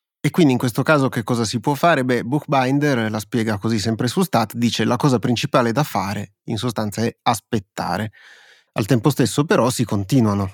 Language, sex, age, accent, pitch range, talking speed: Italian, male, 30-49, native, 110-130 Hz, 200 wpm